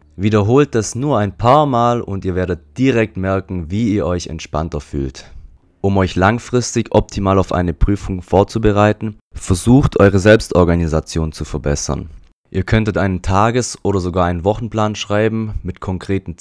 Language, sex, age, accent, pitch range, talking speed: German, male, 30-49, German, 90-110 Hz, 145 wpm